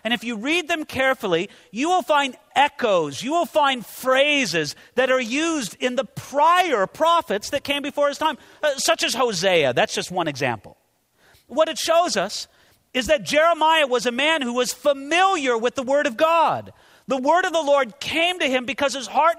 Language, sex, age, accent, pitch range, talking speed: English, male, 40-59, American, 205-305 Hz, 190 wpm